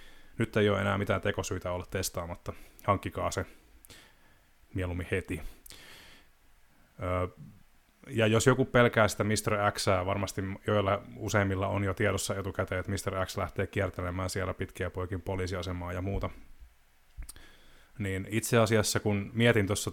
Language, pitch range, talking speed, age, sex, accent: Finnish, 90-110 Hz, 135 wpm, 30-49, male, native